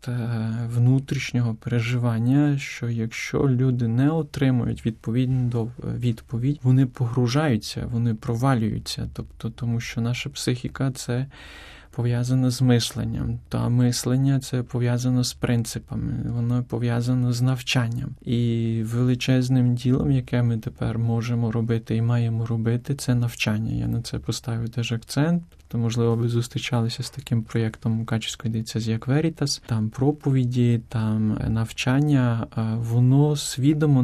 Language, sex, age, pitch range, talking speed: Ukrainian, male, 20-39, 115-130 Hz, 120 wpm